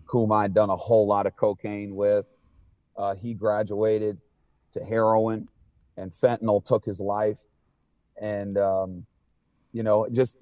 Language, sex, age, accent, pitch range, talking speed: English, male, 40-59, American, 105-125 Hz, 140 wpm